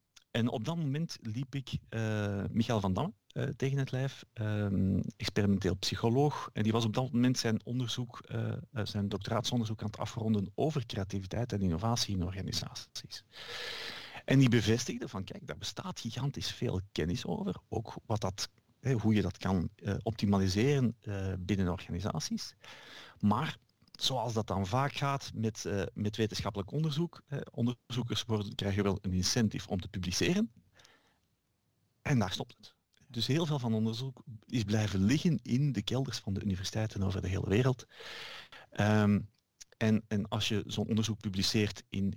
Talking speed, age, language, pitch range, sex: 155 wpm, 50-69, Dutch, 100-130 Hz, male